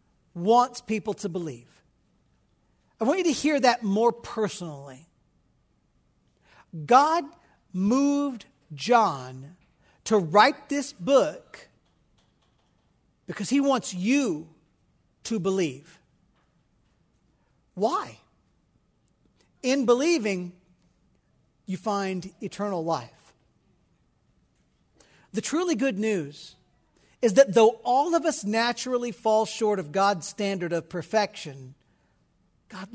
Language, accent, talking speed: English, American, 95 wpm